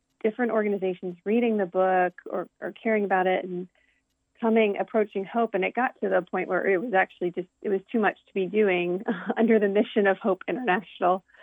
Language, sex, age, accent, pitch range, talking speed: English, female, 30-49, American, 180-220 Hz, 200 wpm